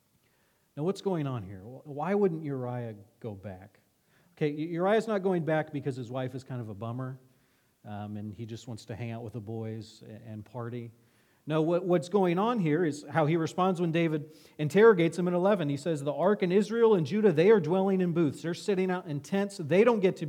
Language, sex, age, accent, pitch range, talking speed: English, male, 40-59, American, 120-170 Hz, 215 wpm